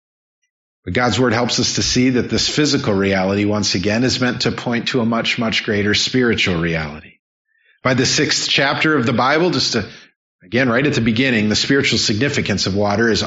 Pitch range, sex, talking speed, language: 105-135 Hz, male, 200 wpm, English